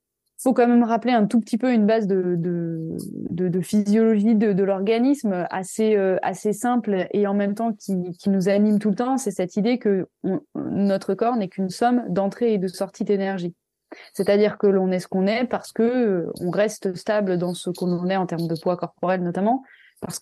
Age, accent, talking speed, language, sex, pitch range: 20-39, French, 210 wpm, French, female, 190-235 Hz